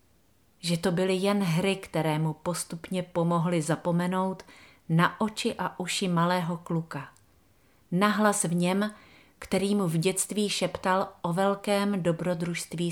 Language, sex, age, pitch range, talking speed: Czech, female, 40-59, 150-185 Hz, 125 wpm